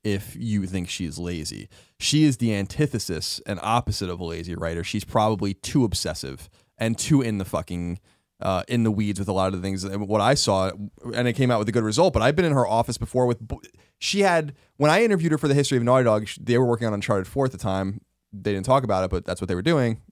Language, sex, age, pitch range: English, male, 20-39, 95-130 Hz